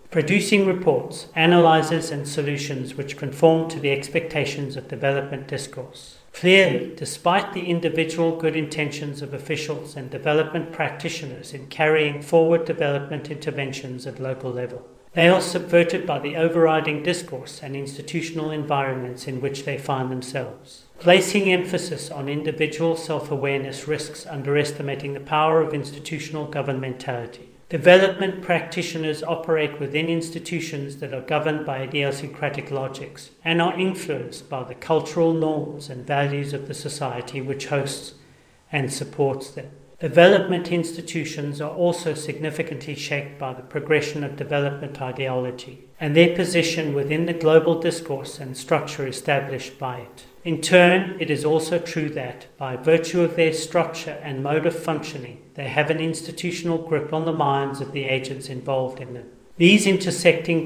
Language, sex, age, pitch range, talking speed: English, male, 40-59, 140-165 Hz, 140 wpm